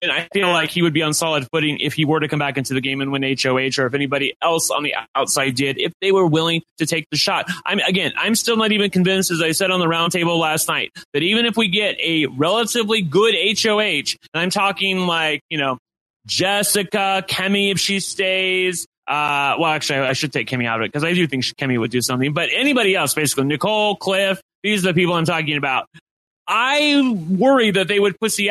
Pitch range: 150-195 Hz